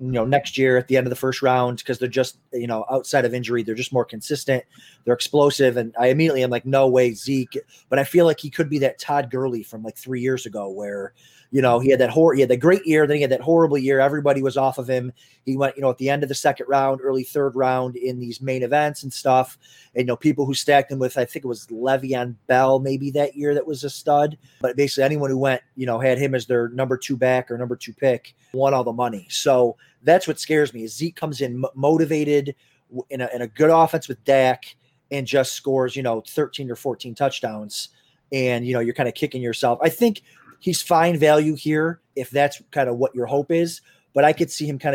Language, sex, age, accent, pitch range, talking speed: English, male, 30-49, American, 125-145 Hz, 255 wpm